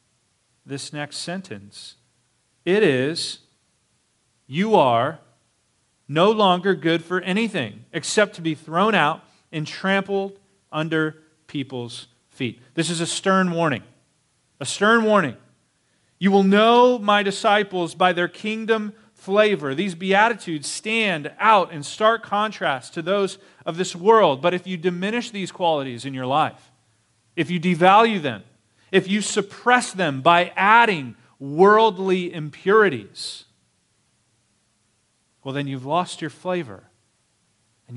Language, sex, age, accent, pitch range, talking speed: English, male, 40-59, American, 130-195 Hz, 125 wpm